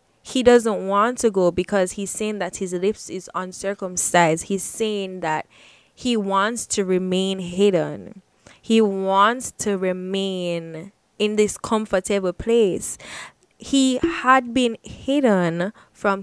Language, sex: English, female